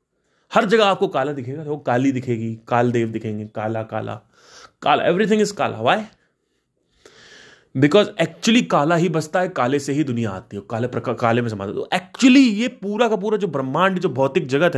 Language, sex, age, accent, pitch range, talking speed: Hindi, male, 30-49, native, 125-185 Hz, 180 wpm